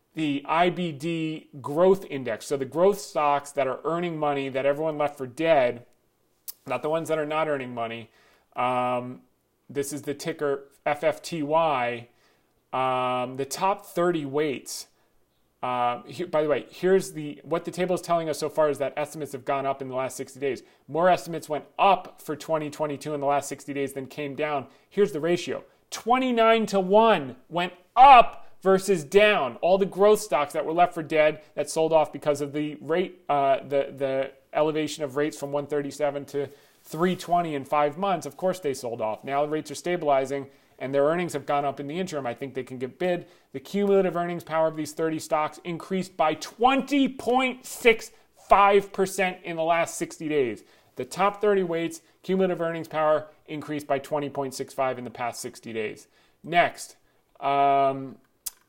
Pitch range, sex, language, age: 140-175 Hz, male, English, 40-59